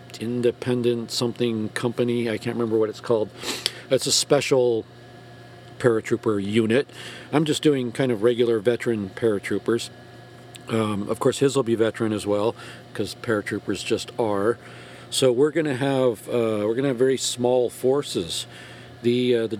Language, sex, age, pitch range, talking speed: English, male, 50-69, 115-125 Hz, 150 wpm